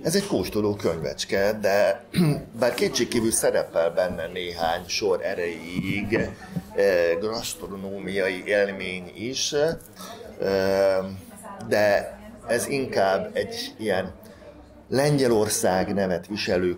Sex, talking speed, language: male, 90 wpm, Hungarian